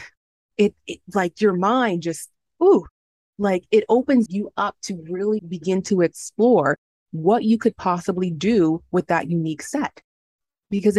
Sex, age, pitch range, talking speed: female, 20-39, 170-205 Hz, 145 wpm